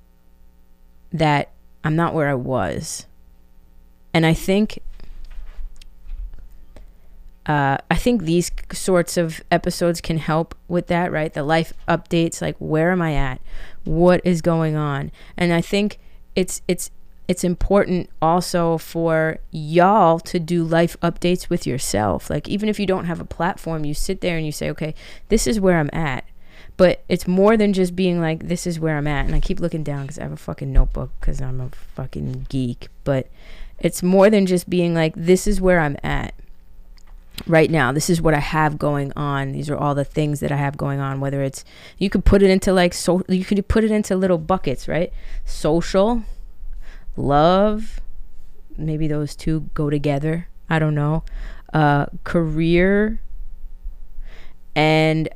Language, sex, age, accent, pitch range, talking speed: English, female, 20-39, American, 130-175 Hz, 170 wpm